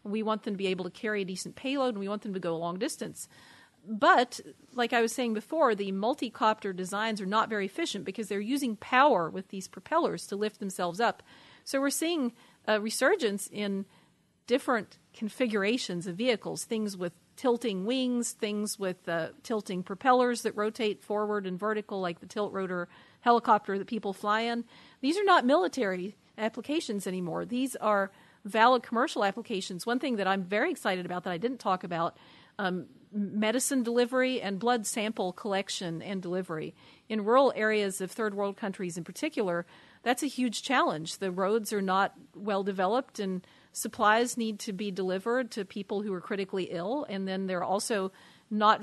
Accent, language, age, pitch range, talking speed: American, English, 40-59, 190-235 Hz, 175 wpm